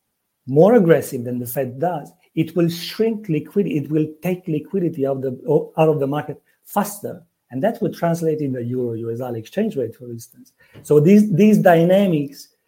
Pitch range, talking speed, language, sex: 130-170 Hz, 175 wpm, English, male